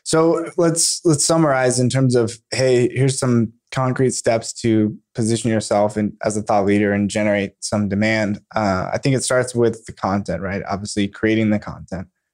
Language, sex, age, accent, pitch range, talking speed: English, male, 20-39, American, 100-115 Hz, 175 wpm